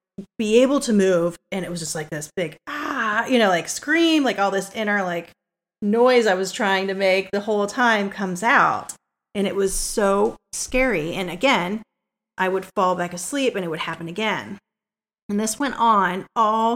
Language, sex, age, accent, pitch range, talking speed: English, female, 30-49, American, 170-210 Hz, 195 wpm